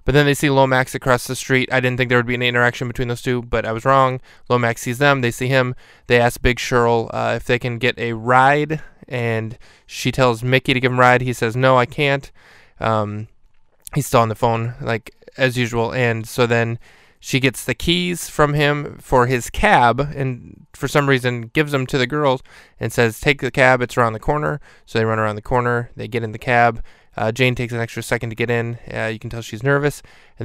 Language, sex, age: English, male, 20-39